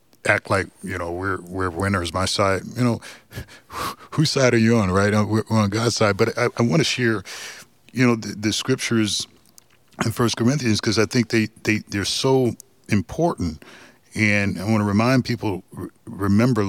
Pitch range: 100-120 Hz